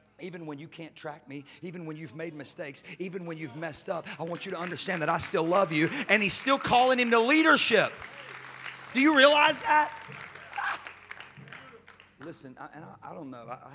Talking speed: 200 wpm